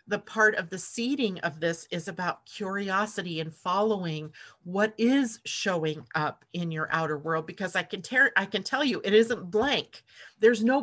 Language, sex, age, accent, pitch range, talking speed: English, female, 40-59, American, 170-215 Hz, 185 wpm